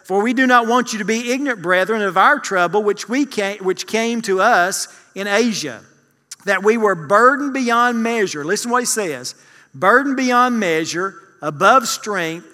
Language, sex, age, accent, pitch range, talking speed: English, male, 40-59, American, 185-235 Hz, 180 wpm